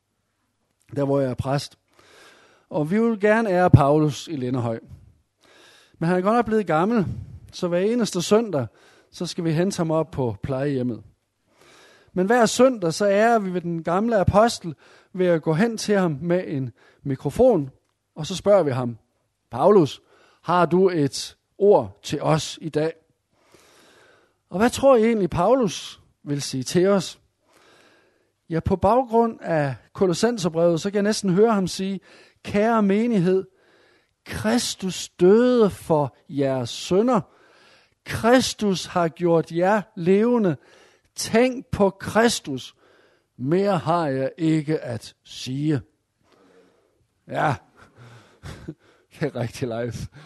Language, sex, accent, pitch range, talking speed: Danish, male, native, 130-200 Hz, 135 wpm